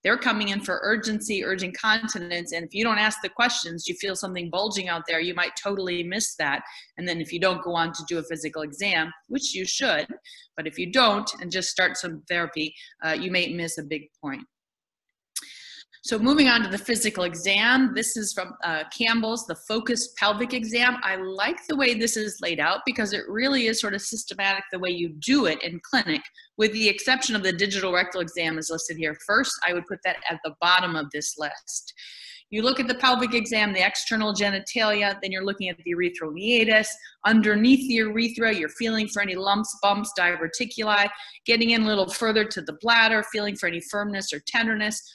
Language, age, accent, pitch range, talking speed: English, 30-49, American, 180-225 Hz, 205 wpm